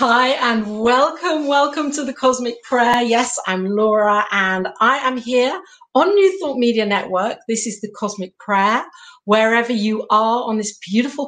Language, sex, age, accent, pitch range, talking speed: English, female, 50-69, British, 195-240 Hz, 165 wpm